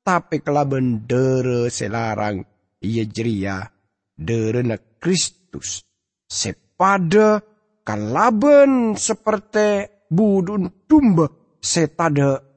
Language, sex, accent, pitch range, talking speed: English, male, Indonesian, 105-155 Hz, 75 wpm